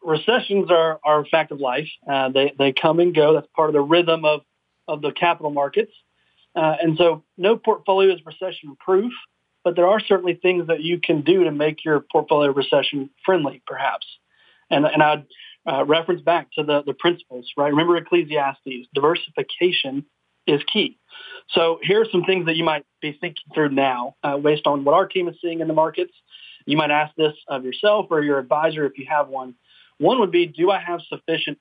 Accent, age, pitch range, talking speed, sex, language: American, 40-59, 145-175 Hz, 195 wpm, male, English